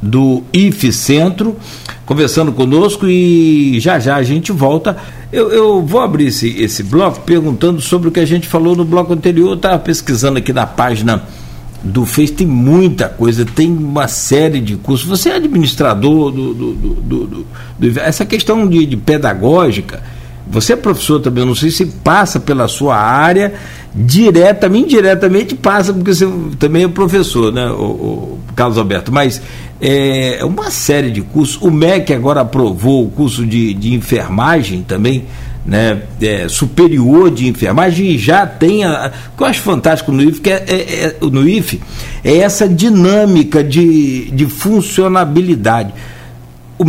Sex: male